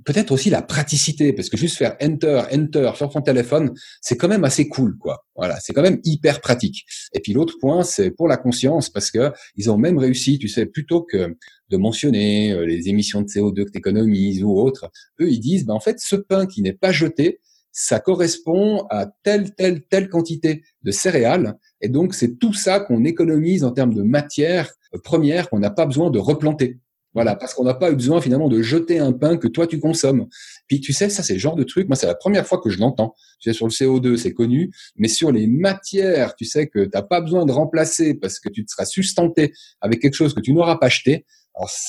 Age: 30-49